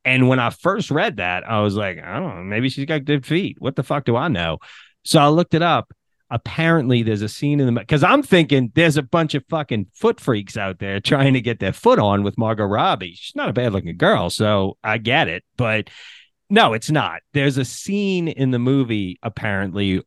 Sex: male